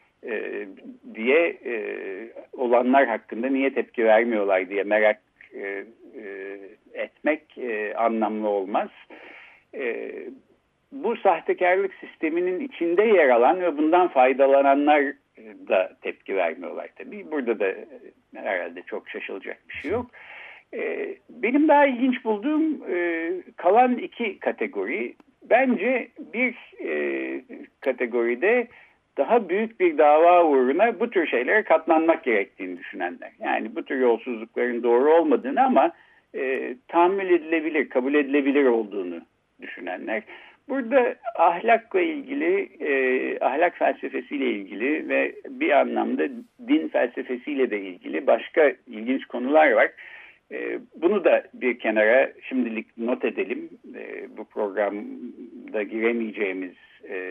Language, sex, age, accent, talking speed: Turkish, male, 60-79, native, 110 wpm